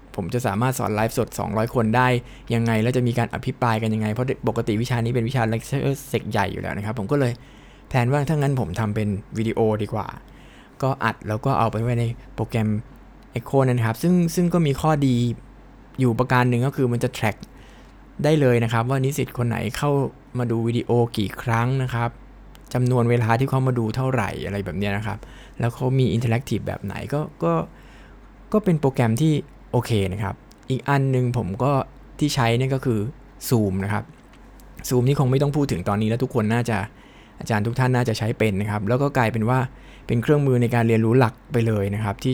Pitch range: 110-130 Hz